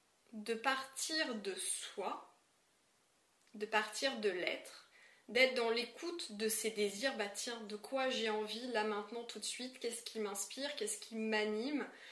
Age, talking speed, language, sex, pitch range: 20-39, 155 wpm, French, female, 215-270 Hz